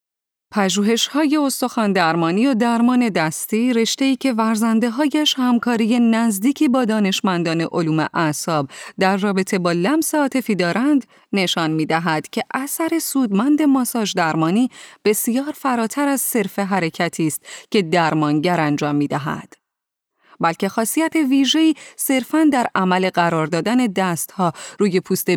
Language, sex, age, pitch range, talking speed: Persian, female, 30-49, 180-265 Hz, 115 wpm